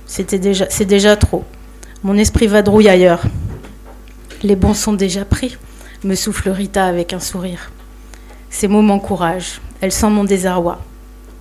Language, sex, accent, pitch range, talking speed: French, female, French, 185-210 Hz, 140 wpm